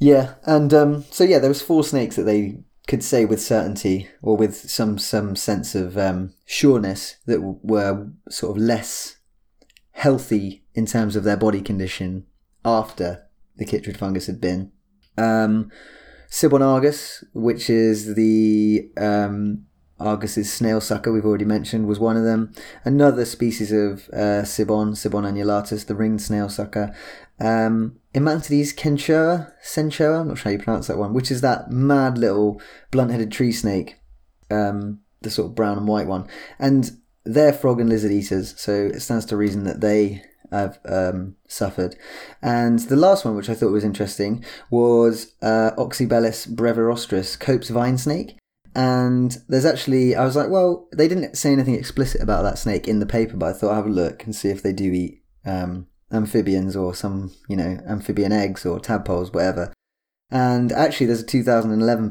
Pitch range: 100-120 Hz